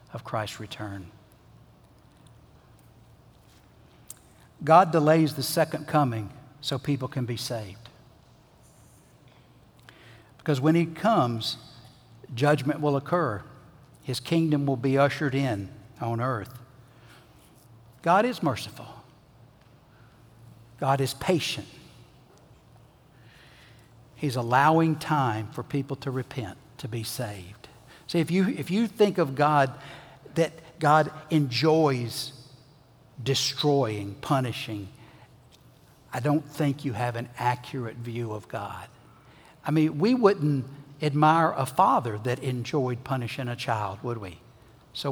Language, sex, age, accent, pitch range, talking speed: English, male, 60-79, American, 120-155 Hz, 110 wpm